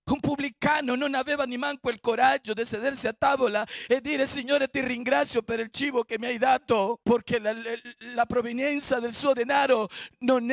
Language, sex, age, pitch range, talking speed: Italian, male, 50-69, 240-290 Hz, 175 wpm